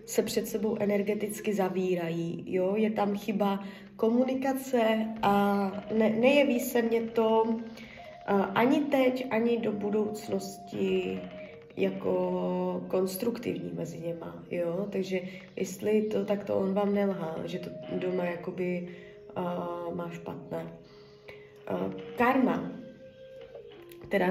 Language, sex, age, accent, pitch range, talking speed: Czech, female, 20-39, native, 185-220 Hz, 110 wpm